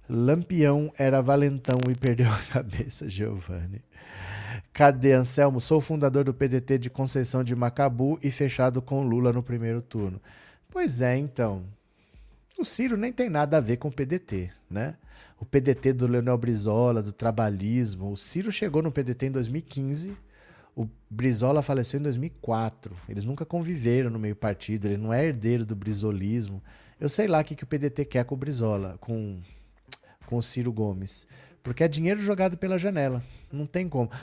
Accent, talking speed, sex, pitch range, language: Brazilian, 170 wpm, male, 115-155 Hz, Portuguese